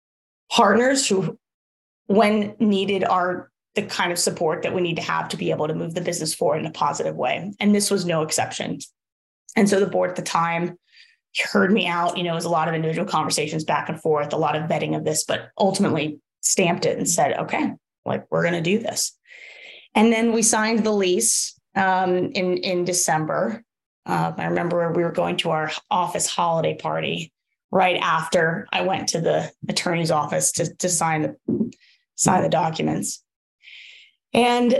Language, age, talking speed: English, 20-39, 185 wpm